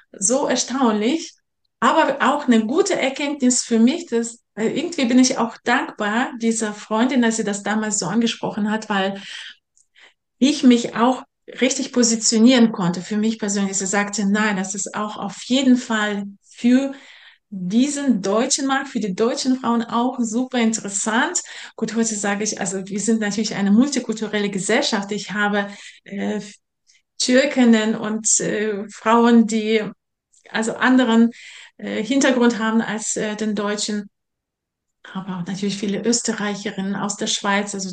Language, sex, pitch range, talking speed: German, female, 210-250 Hz, 140 wpm